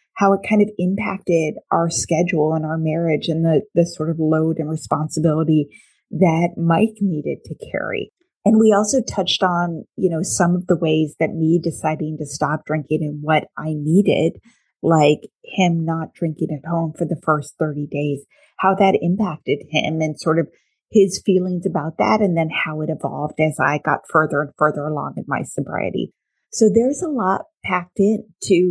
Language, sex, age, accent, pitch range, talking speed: English, female, 30-49, American, 155-190 Hz, 180 wpm